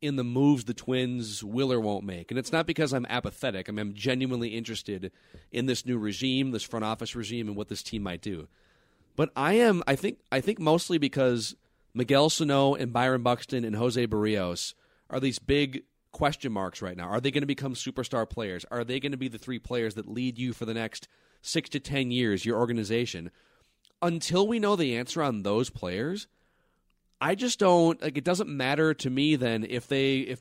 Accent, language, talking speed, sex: American, English, 210 wpm, male